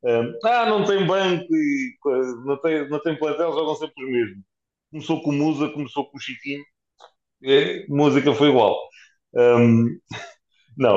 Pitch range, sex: 110-140 Hz, male